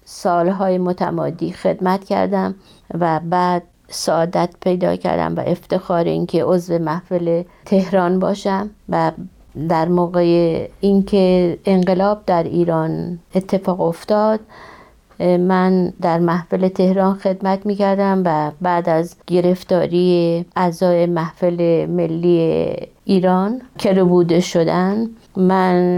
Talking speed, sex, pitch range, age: 105 wpm, female, 170-190 Hz, 50-69